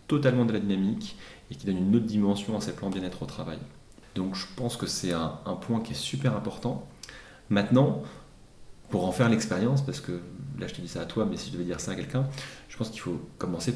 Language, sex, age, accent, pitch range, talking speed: French, male, 30-49, French, 90-120 Hz, 240 wpm